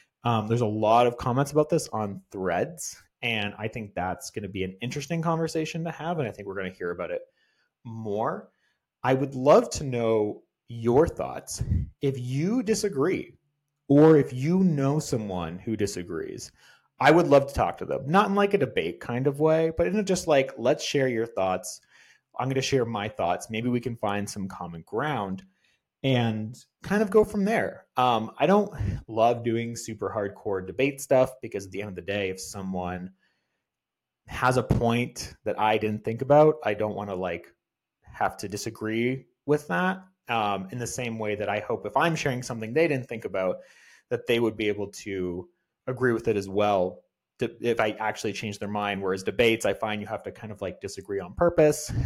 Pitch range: 105-145 Hz